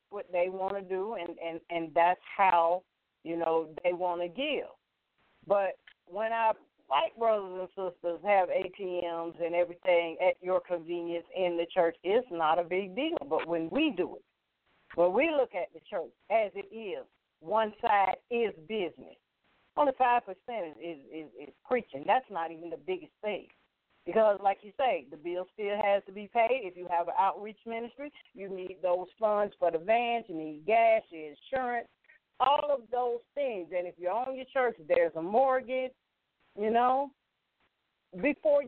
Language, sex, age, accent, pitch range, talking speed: English, female, 40-59, American, 180-255 Hz, 170 wpm